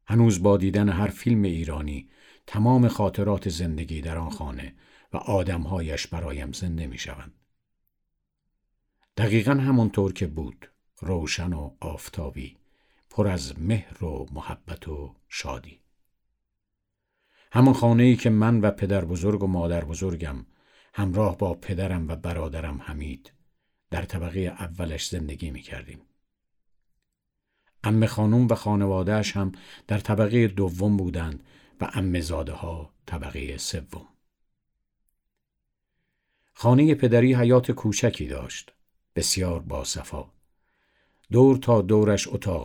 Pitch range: 80-105 Hz